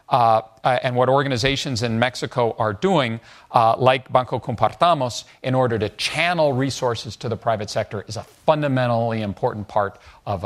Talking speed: 155 wpm